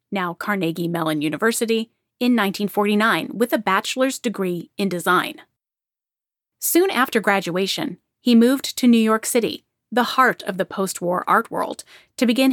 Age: 30-49